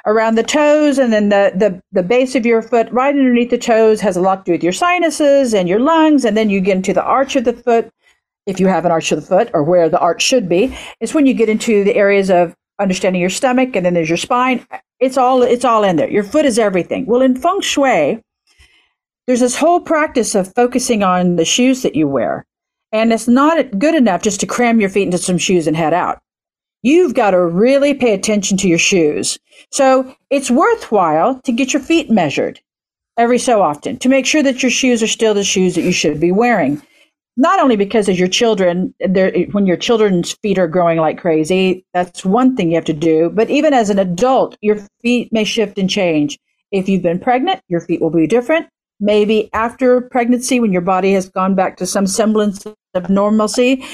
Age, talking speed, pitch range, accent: 50-69, 220 wpm, 190-255 Hz, American